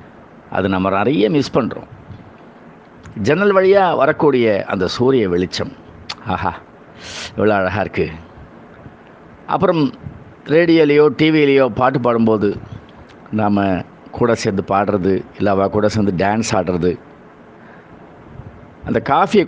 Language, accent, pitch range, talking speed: Tamil, native, 100-130 Hz, 95 wpm